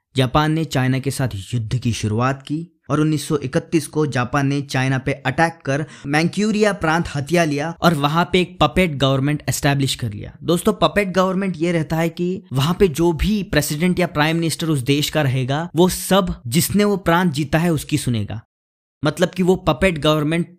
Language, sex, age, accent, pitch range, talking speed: Hindi, male, 20-39, native, 130-170 Hz, 185 wpm